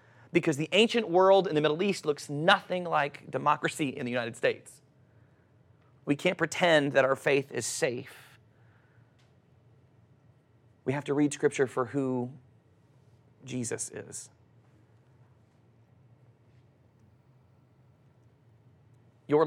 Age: 30-49